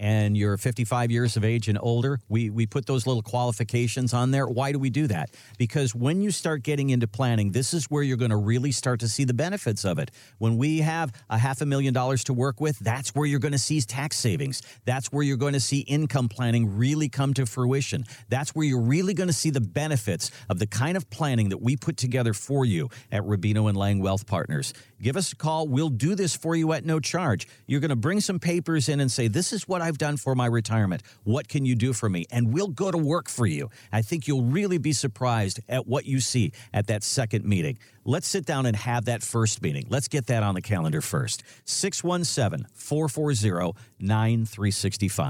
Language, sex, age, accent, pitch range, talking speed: English, male, 50-69, American, 115-145 Hz, 220 wpm